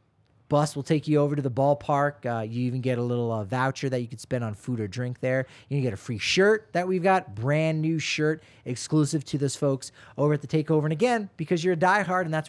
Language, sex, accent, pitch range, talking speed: English, male, American, 130-165 Hz, 255 wpm